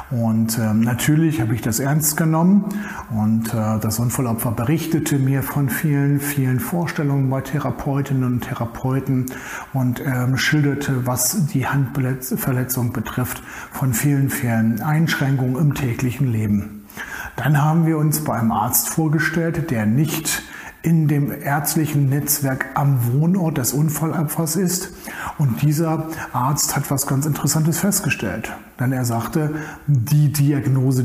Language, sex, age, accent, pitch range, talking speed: German, male, 60-79, German, 125-155 Hz, 125 wpm